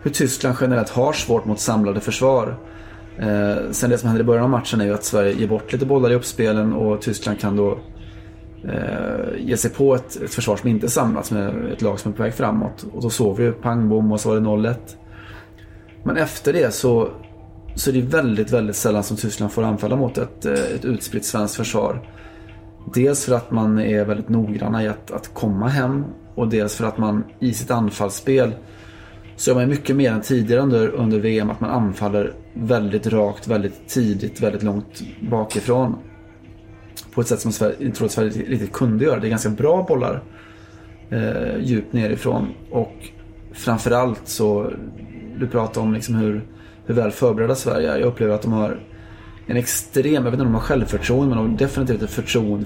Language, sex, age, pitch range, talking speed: Swedish, male, 20-39, 105-120 Hz, 195 wpm